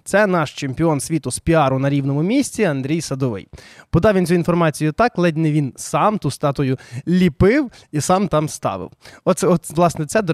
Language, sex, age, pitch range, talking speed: Ukrainian, male, 20-39, 140-185 Hz, 185 wpm